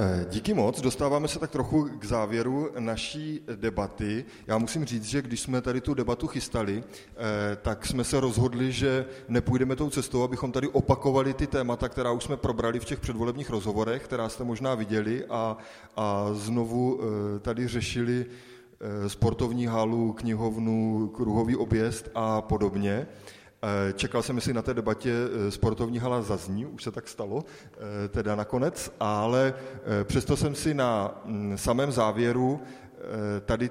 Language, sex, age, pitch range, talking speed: Czech, male, 20-39, 110-130 Hz, 145 wpm